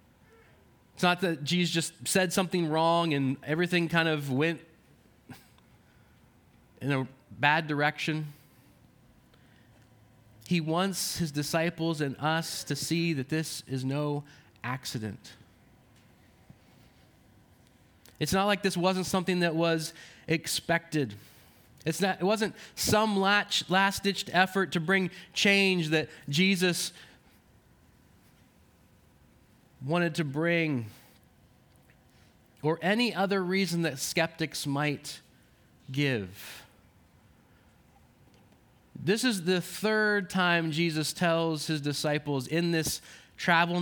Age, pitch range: 20-39, 145-180 Hz